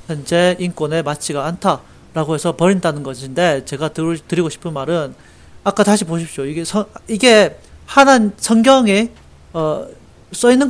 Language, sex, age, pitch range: Korean, male, 40-59, 155-215 Hz